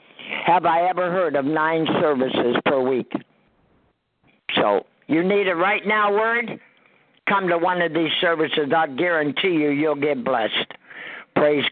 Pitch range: 175-220 Hz